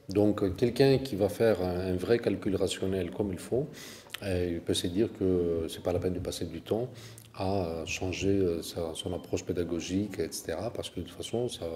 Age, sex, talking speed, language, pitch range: 40-59, male, 200 wpm, French, 90-110 Hz